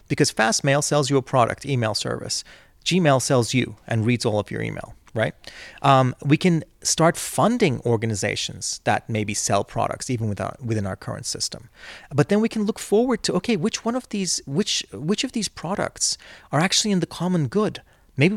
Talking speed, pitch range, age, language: 195 wpm, 115-165 Hz, 30-49, Danish